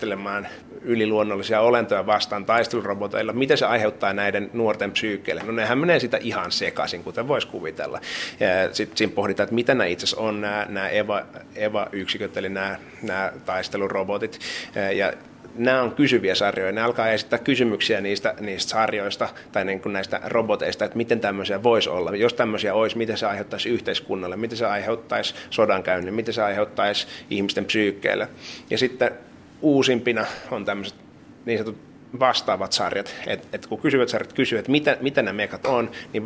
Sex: male